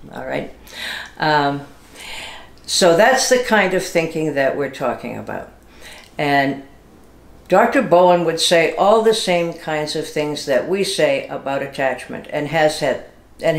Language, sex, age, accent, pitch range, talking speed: English, female, 60-79, American, 140-180 Hz, 135 wpm